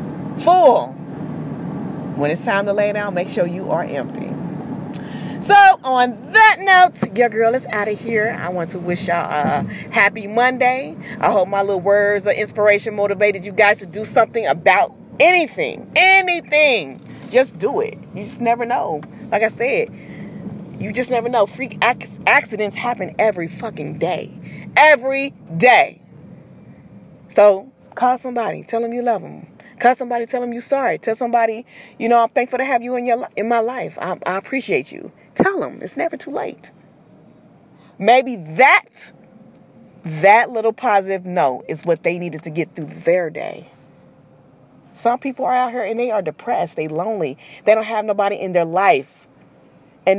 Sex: female